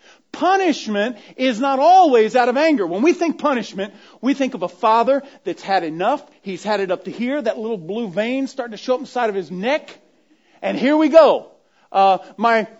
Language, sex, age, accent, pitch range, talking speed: English, male, 40-59, American, 205-280 Hz, 200 wpm